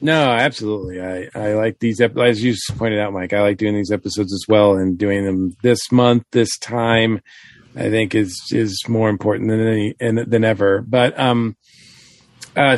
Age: 40-59